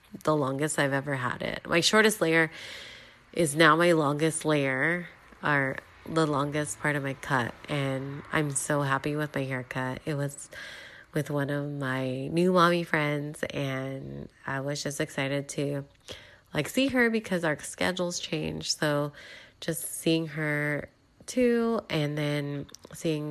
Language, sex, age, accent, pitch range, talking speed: English, female, 20-39, American, 135-165 Hz, 150 wpm